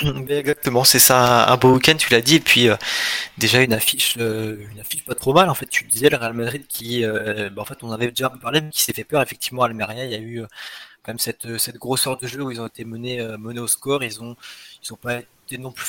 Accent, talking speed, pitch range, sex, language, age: French, 270 wpm, 115-130 Hz, male, French, 20-39